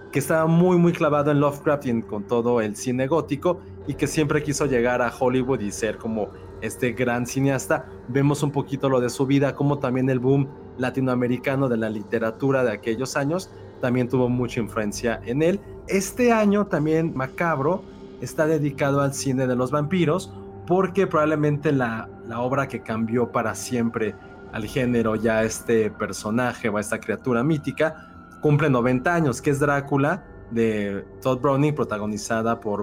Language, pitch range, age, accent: Spanish, 110-150 Hz, 30-49, Mexican